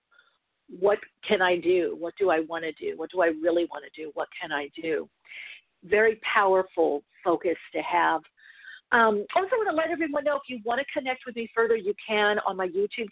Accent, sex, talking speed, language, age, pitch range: American, female, 215 wpm, English, 50-69, 165-225 Hz